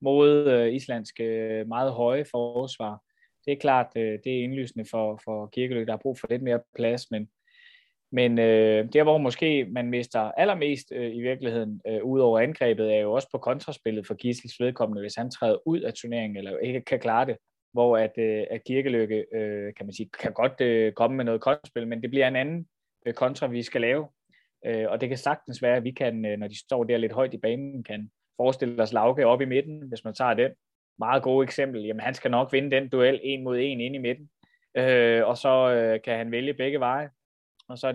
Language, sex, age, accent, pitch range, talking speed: Danish, male, 20-39, native, 110-130 Hz, 215 wpm